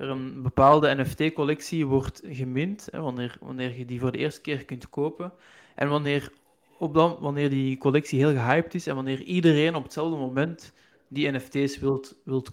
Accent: Dutch